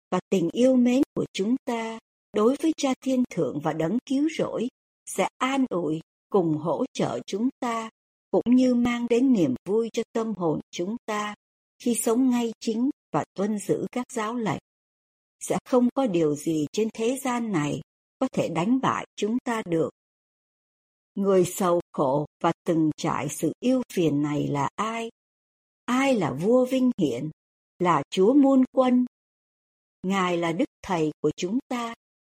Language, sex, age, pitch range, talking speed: Vietnamese, male, 60-79, 170-255 Hz, 165 wpm